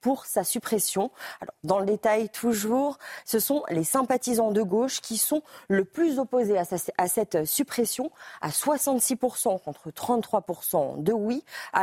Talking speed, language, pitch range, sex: 145 wpm, French, 195-260 Hz, female